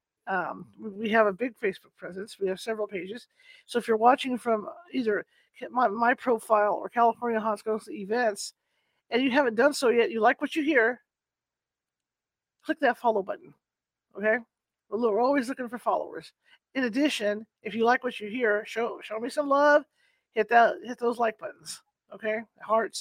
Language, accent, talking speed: English, American, 175 wpm